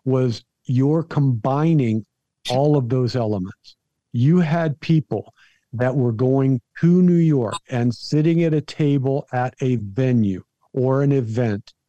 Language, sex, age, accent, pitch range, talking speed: English, male, 50-69, American, 125-155 Hz, 135 wpm